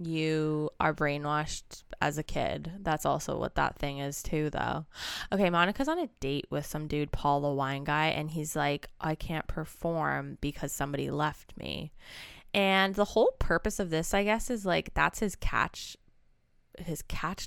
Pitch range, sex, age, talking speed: 145-195 Hz, female, 20-39, 175 wpm